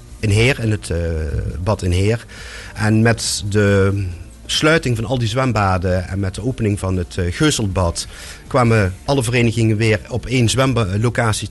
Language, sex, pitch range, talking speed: Dutch, male, 95-120 Hz, 160 wpm